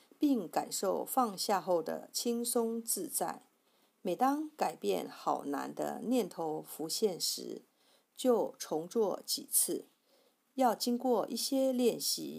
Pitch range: 195-265 Hz